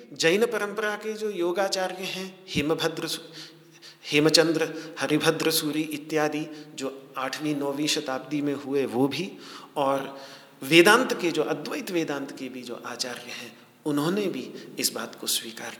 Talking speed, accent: 135 wpm, native